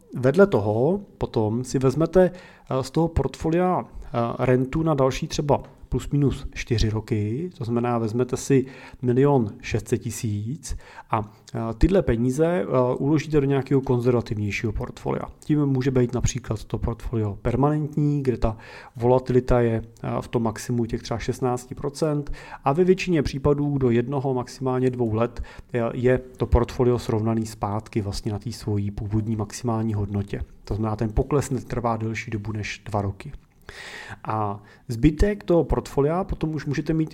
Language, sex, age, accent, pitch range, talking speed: Czech, male, 40-59, native, 115-145 Hz, 140 wpm